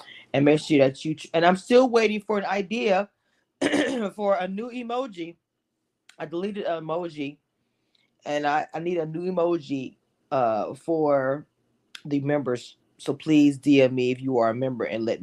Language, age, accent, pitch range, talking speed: English, 20-39, American, 130-170 Hz, 160 wpm